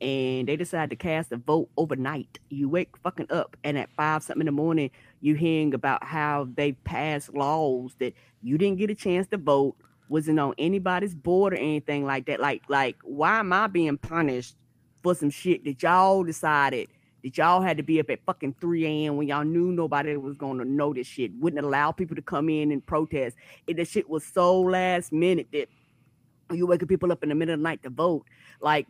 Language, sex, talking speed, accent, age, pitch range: English, female, 215 wpm, American, 20-39, 145-185 Hz